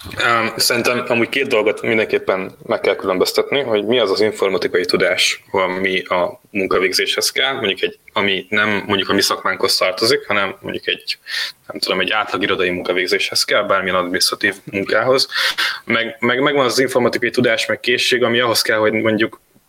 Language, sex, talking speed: Hungarian, male, 160 wpm